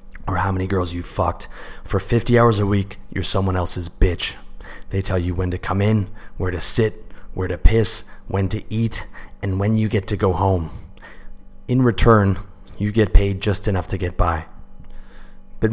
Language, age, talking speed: English, 30-49, 185 wpm